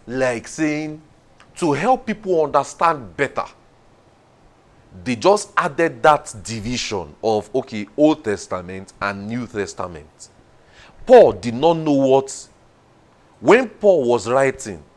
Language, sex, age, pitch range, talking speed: English, male, 40-59, 115-160 Hz, 110 wpm